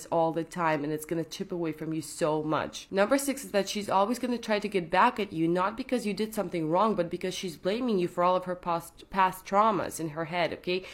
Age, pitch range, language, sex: 20-39, 170-210 Hz, English, female